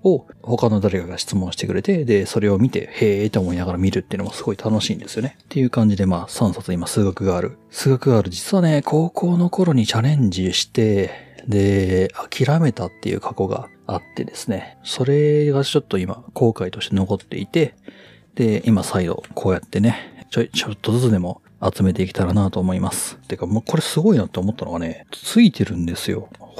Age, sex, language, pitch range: 40-59, male, Japanese, 95-145 Hz